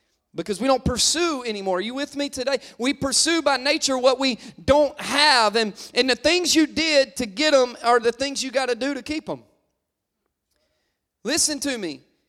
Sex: male